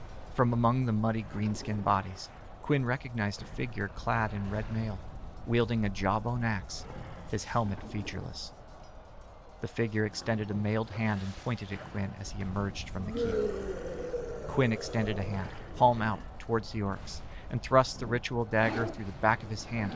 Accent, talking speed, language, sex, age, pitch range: American, 170 wpm, English, male, 40-59, 100-120 Hz